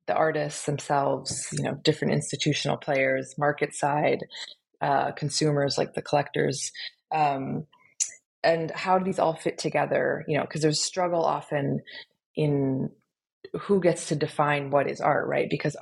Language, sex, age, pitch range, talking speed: English, female, 20-39, 145-170 Hz, 150 wpm